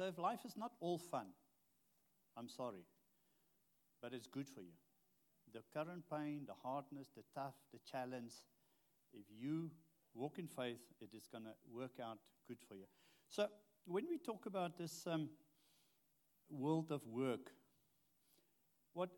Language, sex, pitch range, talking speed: English, male, 125-165 Hz, 150 wpm